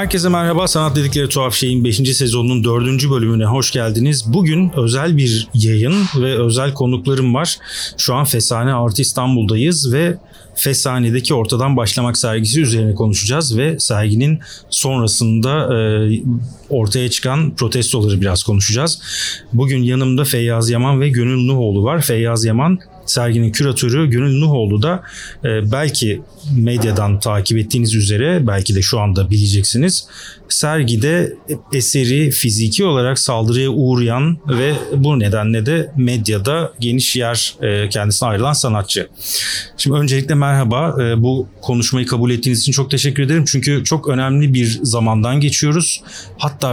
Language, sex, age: Turkish, male, 40-59